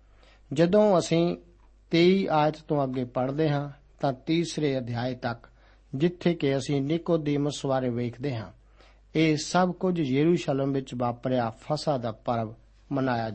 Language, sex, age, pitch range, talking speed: Punjabi, male, 60-79, 130-165 Hz, 130 wpm